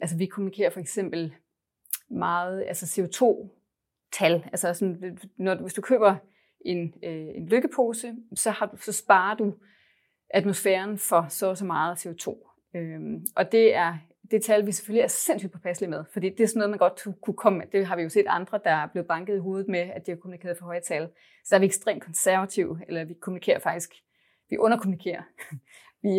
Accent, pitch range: native, 175-210 Hz